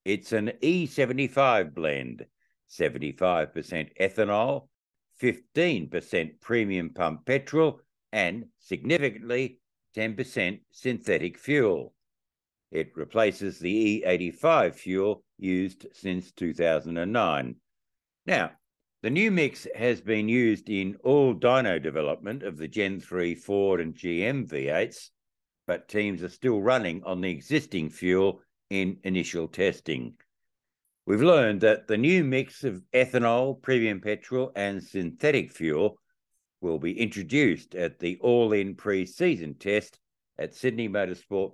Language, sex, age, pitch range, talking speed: English, male, 60-79, 95-130 Hz, 115 wpm